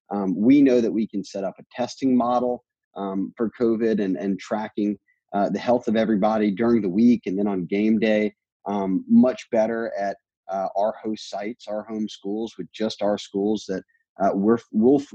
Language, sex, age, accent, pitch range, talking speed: English, male, 30-49, American, 100-120 Hz, 200 wpm